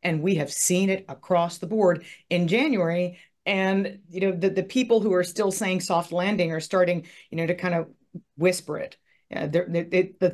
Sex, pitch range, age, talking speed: female, 165-195 Hz, 40-59, 210 wpm